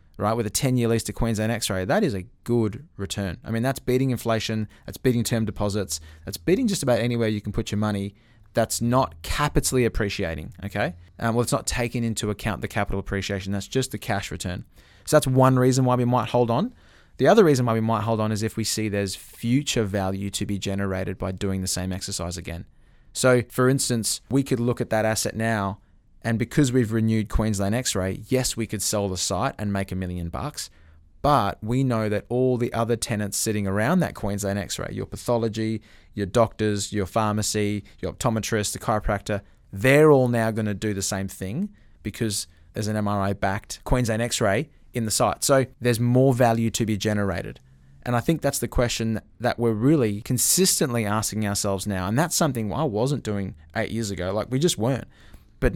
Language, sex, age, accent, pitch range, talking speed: English, male, 20-39, Australian, 100-125 Hz, 200 wpm